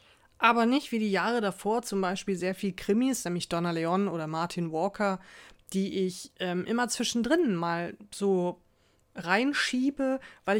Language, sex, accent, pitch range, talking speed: German, female, German, 175-215 Hz, 145 wpm